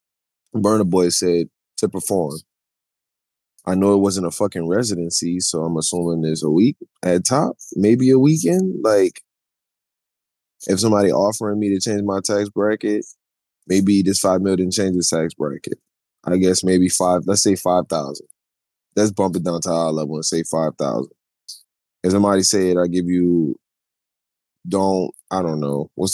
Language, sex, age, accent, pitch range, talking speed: English, male, 20-39, American, 85-100 Hz, 170 wpm